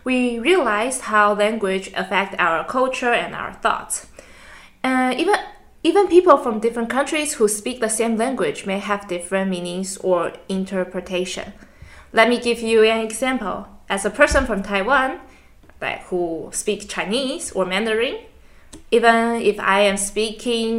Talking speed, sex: 145 wpm, female